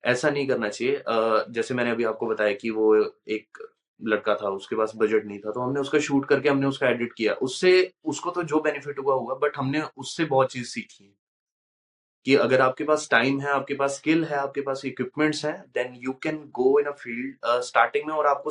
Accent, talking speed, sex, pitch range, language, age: Indian, 185 wpm, male, 115-145 Hz, English, 20-39